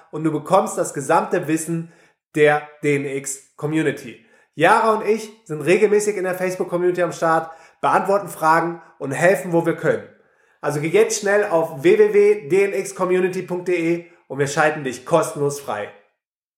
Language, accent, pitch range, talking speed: German, German, 155-195 Hz, 135 wpm